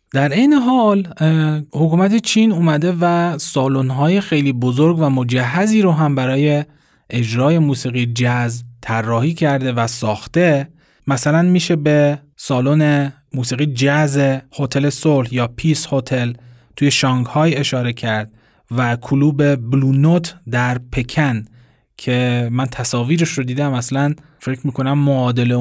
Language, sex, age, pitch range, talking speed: Persian, male, 30-49, 125-160 Hz, 120 wpm